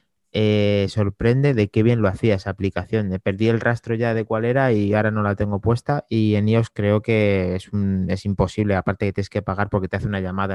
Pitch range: 95-110 Hz